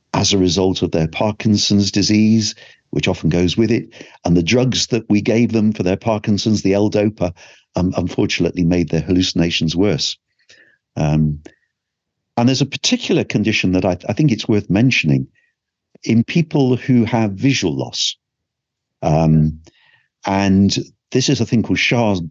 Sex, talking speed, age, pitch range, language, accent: male, 155 wpm, 50-69, 90-125 Hz, English, British